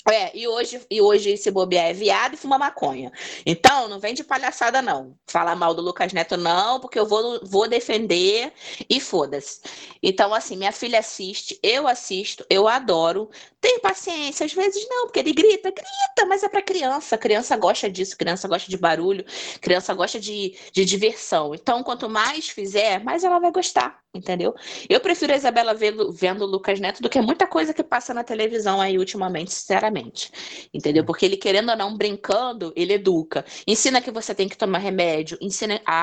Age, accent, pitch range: 20-39, Brazilian, 185-265 Hz